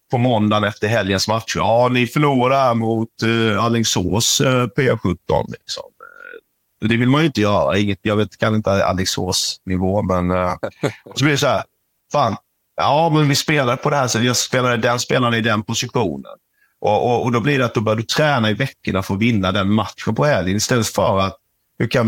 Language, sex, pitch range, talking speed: Swedish, male, 100-130 Hz, 200 wpm